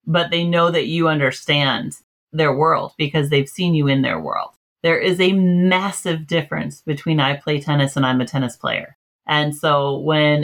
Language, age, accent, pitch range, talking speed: English, 30-49, American, 150-185 Hz, 185 wpm